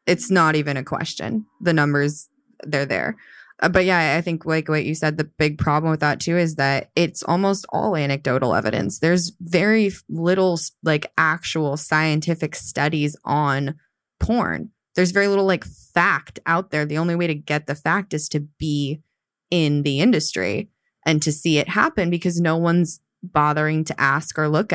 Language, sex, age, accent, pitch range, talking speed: English, female, 20-39, American, 150-180 Hz, 175 wpm